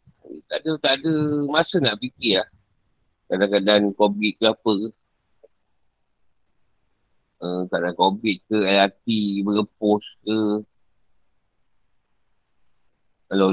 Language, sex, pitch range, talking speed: Malay, male, 100-125 Hz, 95 wpm